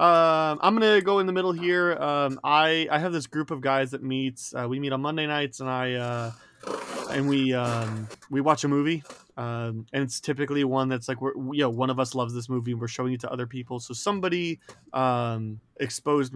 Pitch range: 125-155 Hz